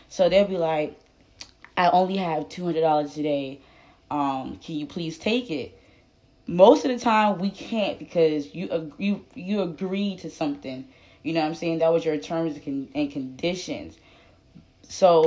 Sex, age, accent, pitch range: female, 10-29, American, 150-190 Hz